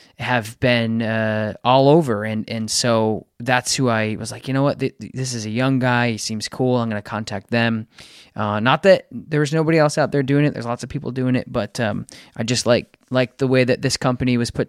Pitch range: 115-135 Hz